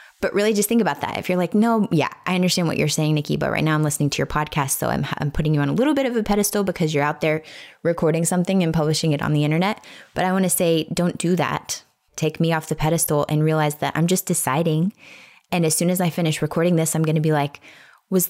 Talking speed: 270 wpm